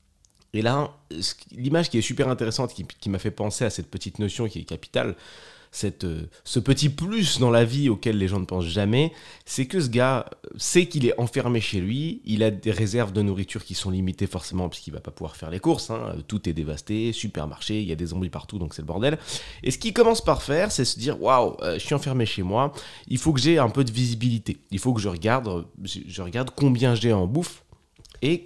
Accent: French